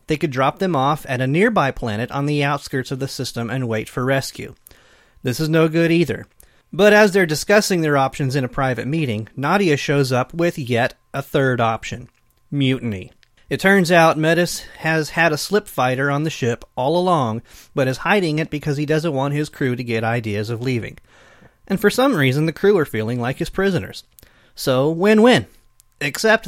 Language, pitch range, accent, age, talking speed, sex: English, 125-165 Hz, American, 30-49, 195 wpm, male